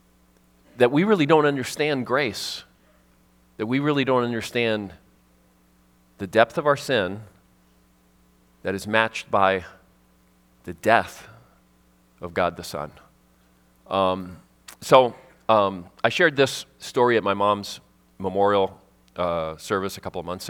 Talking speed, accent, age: 125 wpm, American, 40-59